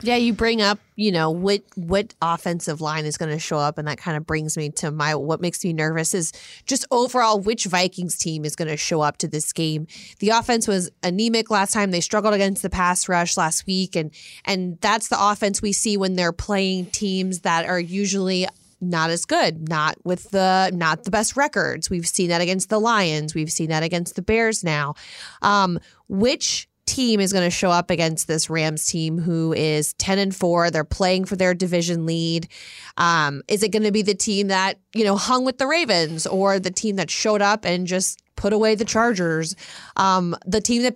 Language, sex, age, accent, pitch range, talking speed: English, female, 30-49, American, 170-210 Hz, 215 wpm